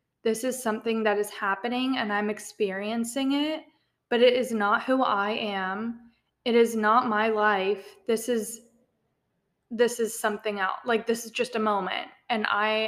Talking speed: 170 wpm